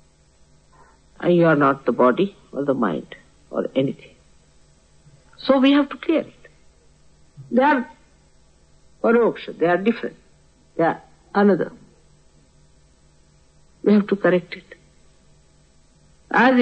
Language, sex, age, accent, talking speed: English, female, 60-79, Indian, 115 wpm